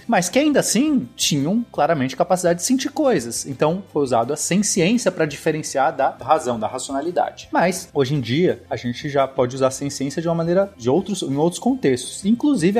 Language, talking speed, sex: Portuguese, 190 wpm, male